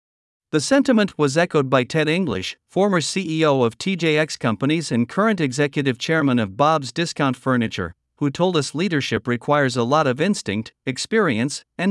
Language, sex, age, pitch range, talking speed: Vietnamese, male, 50-69, 130-170 Hz, 155 wpm